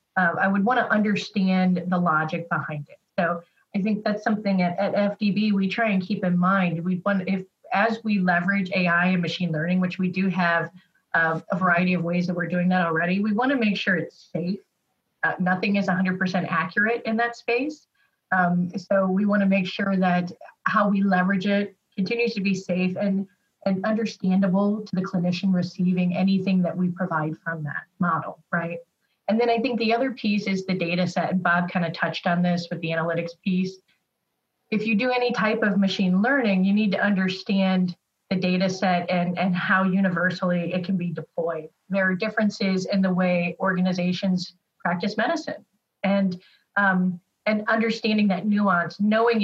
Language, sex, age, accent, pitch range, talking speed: English, female, 30-49, American, 180-205 Hz, 185 wpm